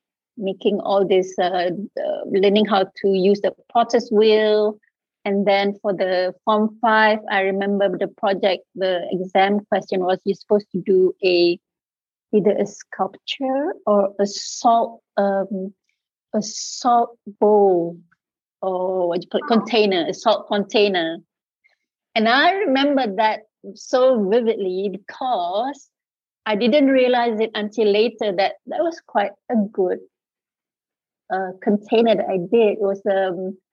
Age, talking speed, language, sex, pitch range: 30-49, 130 wpm, English, female, 195-235 Hz